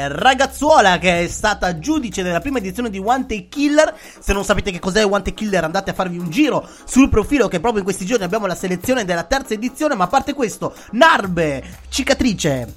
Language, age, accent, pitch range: Italian, 30-49, native, 175-250 Hz